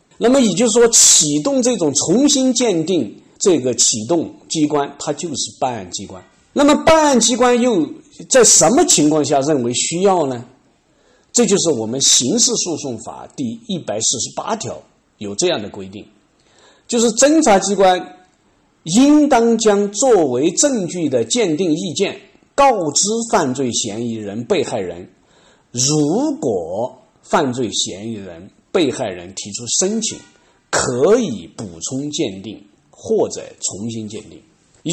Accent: native